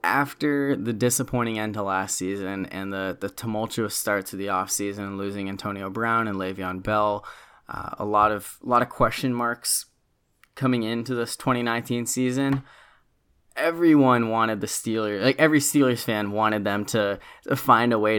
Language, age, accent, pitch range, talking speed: English, 20-39, American, 100-125 Hz, 155 wpm